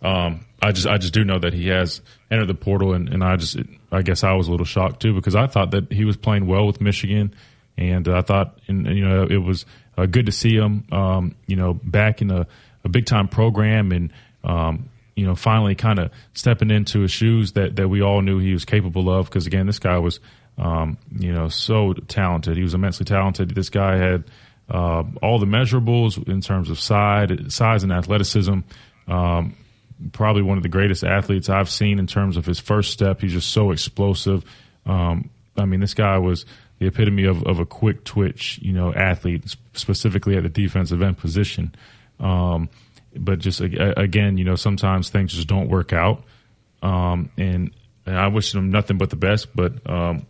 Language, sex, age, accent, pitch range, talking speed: English, male, 30-49, American, 90-110 Hz, 205 wpm